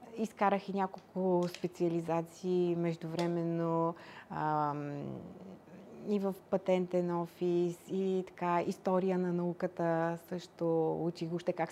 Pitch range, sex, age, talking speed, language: 170-200 Hz, female, 30-49, 90 wpm, Bulgarian